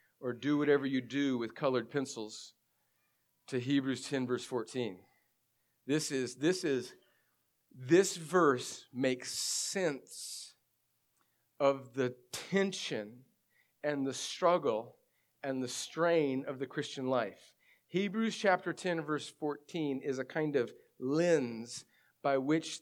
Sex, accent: male, American